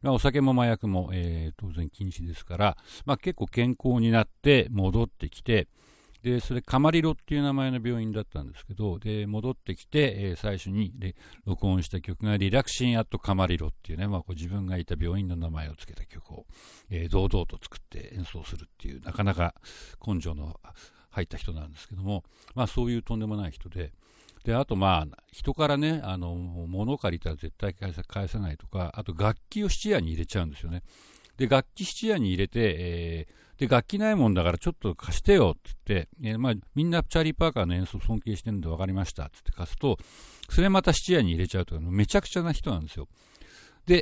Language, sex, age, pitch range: Japanese, male, 60-79, 90-125 Hz